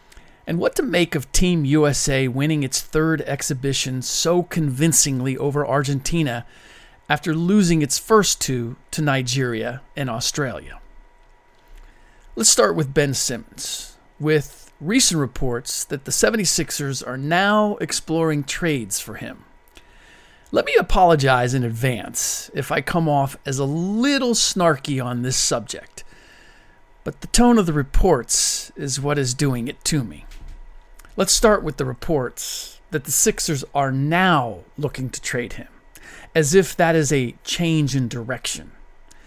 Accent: American